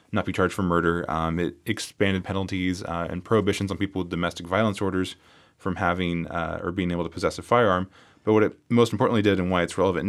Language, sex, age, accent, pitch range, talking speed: English, male, 20-39, American, 85-105 Hz, 225 wpm